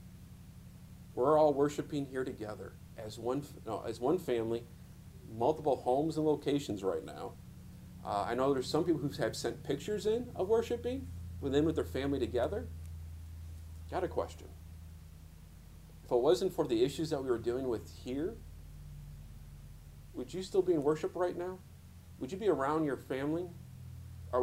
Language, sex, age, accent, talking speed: English, male, 40-59, American, 160 wpm